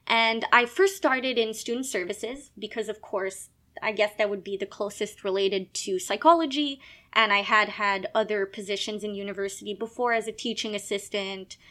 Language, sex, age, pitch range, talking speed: English, female, 20-39, 210-260 Hz, 170 wpm